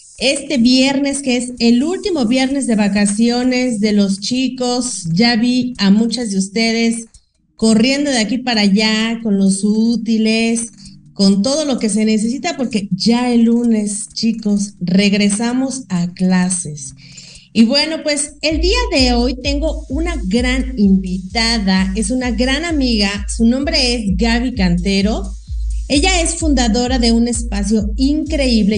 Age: 40-59